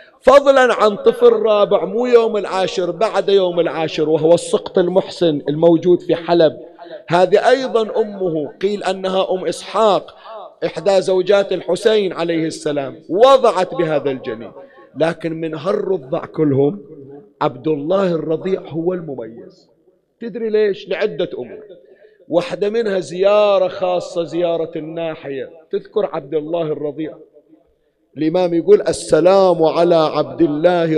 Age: 50-69